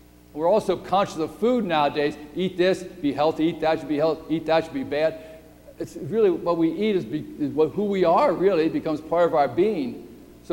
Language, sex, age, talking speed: English, male, 60-79, 220 wpm